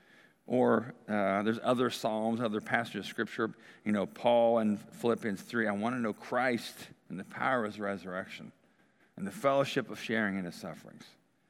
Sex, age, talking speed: male, 50-69, 175 wpm